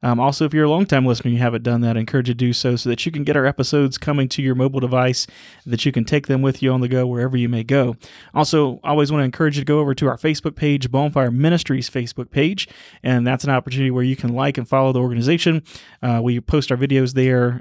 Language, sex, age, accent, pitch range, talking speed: English, male, 30-49, American, 125-145 Hz, 275 wpm